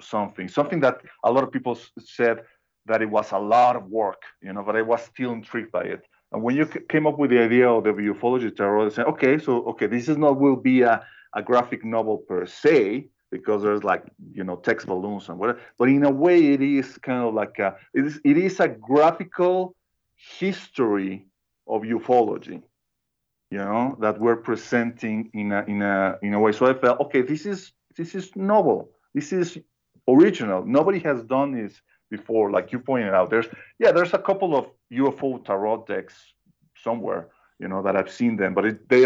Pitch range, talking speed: 105-140 Hz, 205 wpm